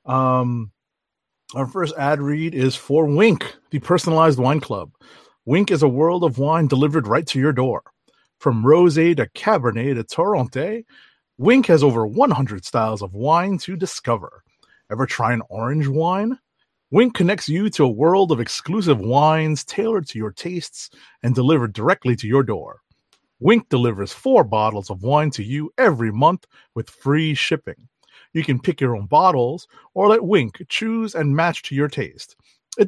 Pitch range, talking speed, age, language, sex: 125-175 Hz, 165 wpm, 30-49, English, male